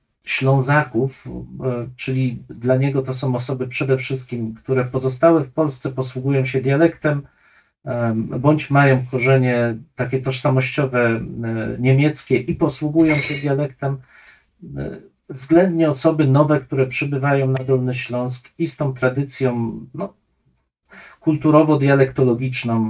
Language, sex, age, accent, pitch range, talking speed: Polish, male, 40-59, native, 125-145 Hz, 100 wpm